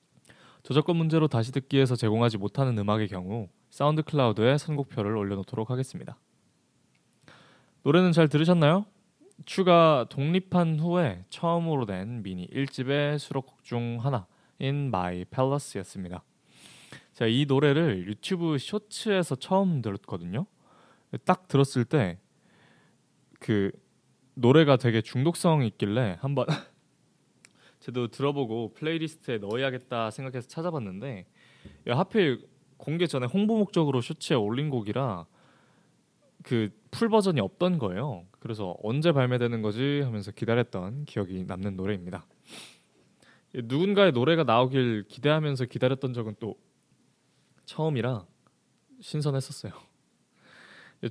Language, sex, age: Korean, male, 20-39